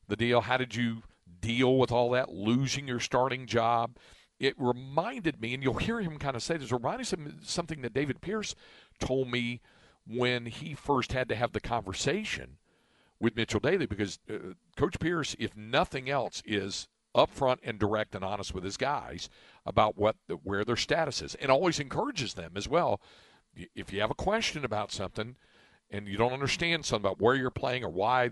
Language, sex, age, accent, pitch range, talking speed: English, male, 50-69, American, 105-130 Hz, 195 wpm